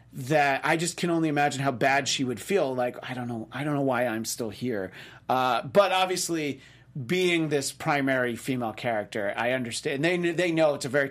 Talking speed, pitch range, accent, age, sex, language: 205 wpm, 115-155 Hz, American, 40-59, male, English